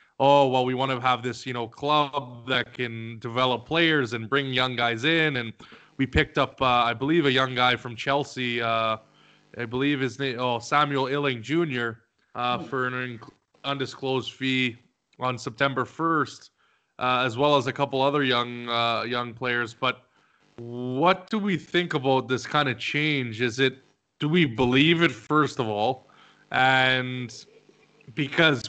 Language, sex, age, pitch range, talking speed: English, male, 20-39, 125-145 Hz, 165 wpm